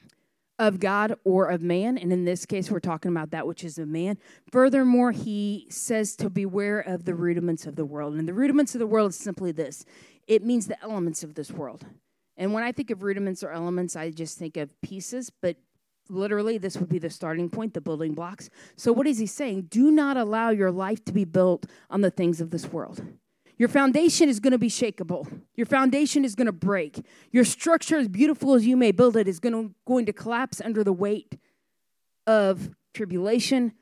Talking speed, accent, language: 215 wpm, American, English